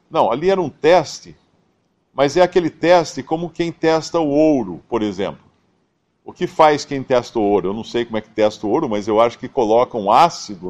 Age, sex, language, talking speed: 50-69, male, Portuguese, 220 wpm